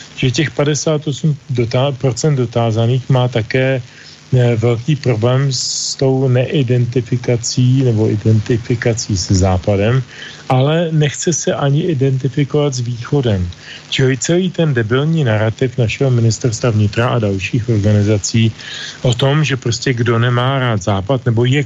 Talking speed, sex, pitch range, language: 120 wpm, male, 120-140 Hz, Slovak